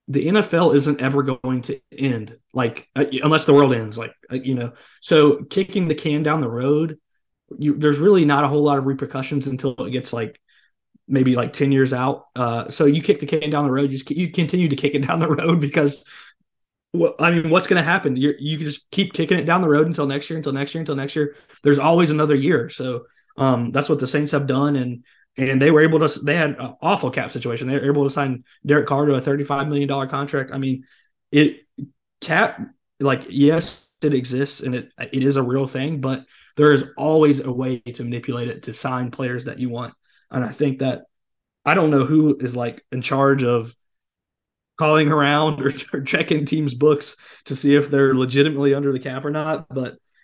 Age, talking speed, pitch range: 20-39, 220 wpm, 130-150 Hz